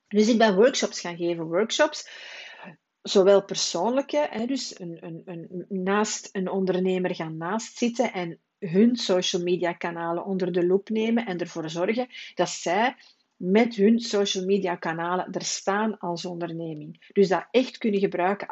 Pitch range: 180-225 Hz